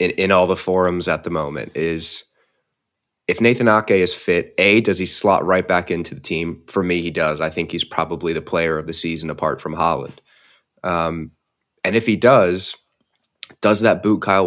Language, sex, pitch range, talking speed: English, male, 85-100 Hz, 200 wpm